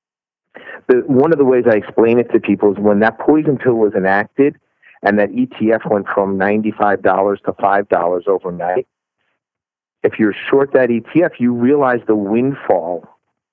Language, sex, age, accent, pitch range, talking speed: English, male, 50-69, American, 105-130 Hz, 165 wpm